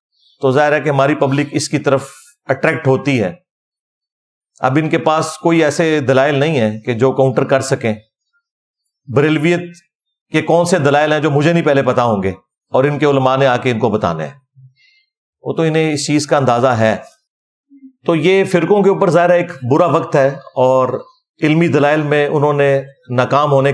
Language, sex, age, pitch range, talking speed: Urdu, male, 40-59, 135-170 Hz, 195 wpm